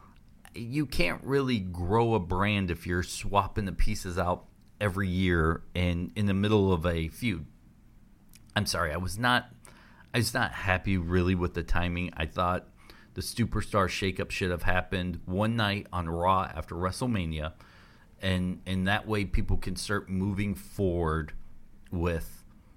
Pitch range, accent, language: 90-110 Hz, American, English